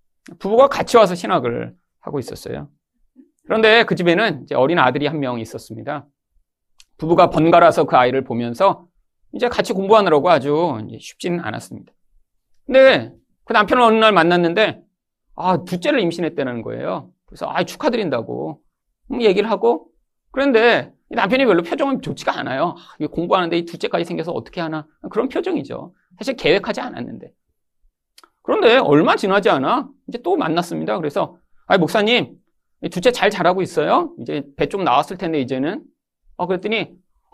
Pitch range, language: 150-245 Hz, Korean